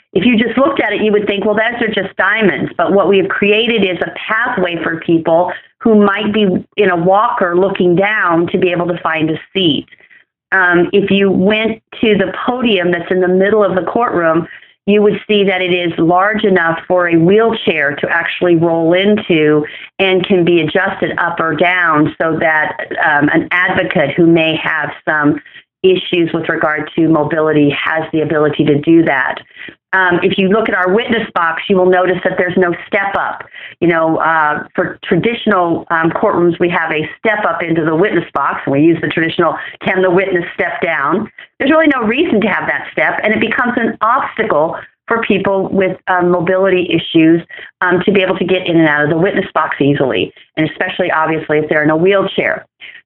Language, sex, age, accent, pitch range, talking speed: English, female, 40-59, American, 165-200 Hz, 200 wpm